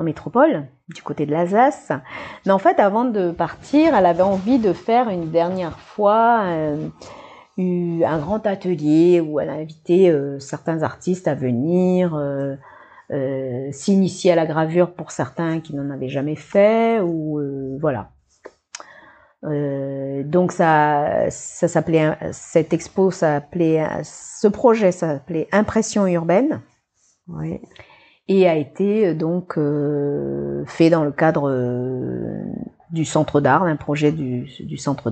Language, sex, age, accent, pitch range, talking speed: French, female, 40-59, French, 150-190 Hz, 140 wpm